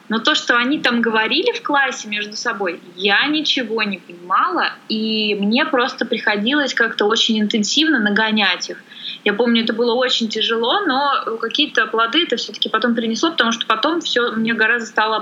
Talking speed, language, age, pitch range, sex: 170 wpm, Russian, 20-39, 210-260 Hz, female